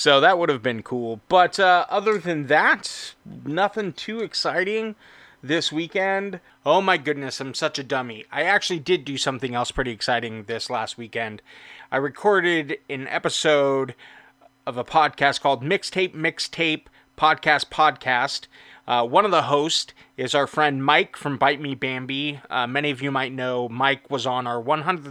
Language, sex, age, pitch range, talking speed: English, male, 30-49, 130-160 Hz, 165 wpm